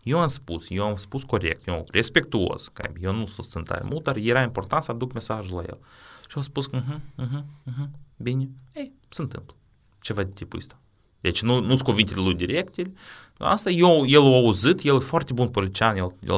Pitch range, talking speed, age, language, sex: 95-135 Hz, 205 wpm, 30-49, Romanian, male